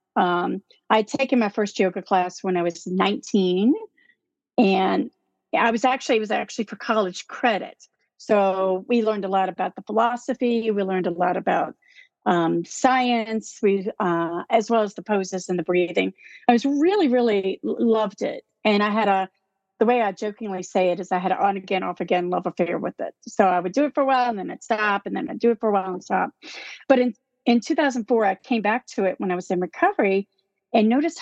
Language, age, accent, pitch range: English, 40-59, American, 190-245 Hz